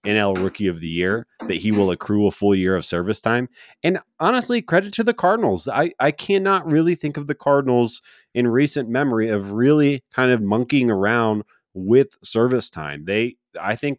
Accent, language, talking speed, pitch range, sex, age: American, English, 190 wpm, 100-130 Hz, male, 30-49